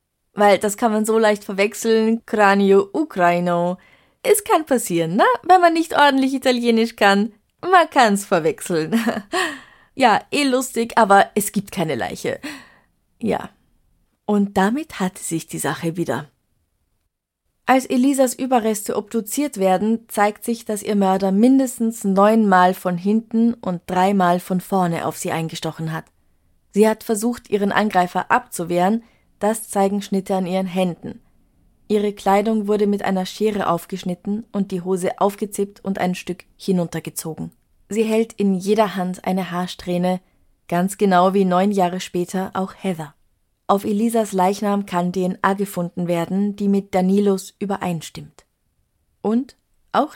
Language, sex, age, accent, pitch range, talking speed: German, female, 20-39, German, 180-220 Hz, 140 wpm